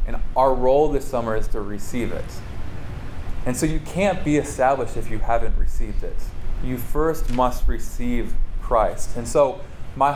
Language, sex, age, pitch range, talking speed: English, male, 20-39, 105-125 Hz, 165 wpm